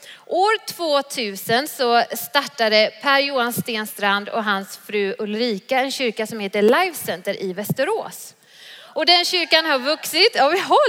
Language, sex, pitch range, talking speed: Swedish, female, 220-300 Hz, 145 wpm